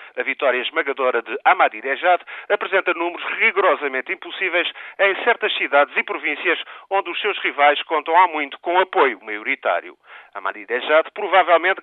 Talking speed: 130 wpm